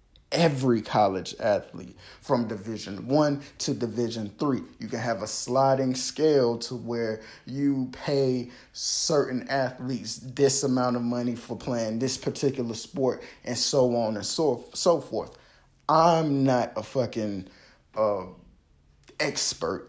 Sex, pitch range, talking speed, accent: male, 110-135 Hz, 130 wpm, American